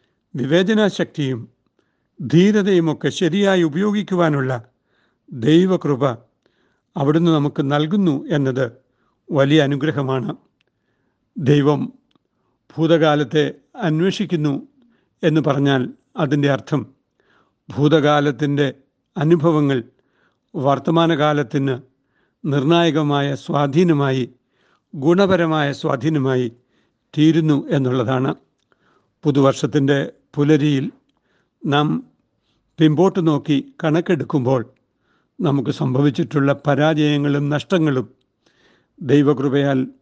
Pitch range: 135-165 Hz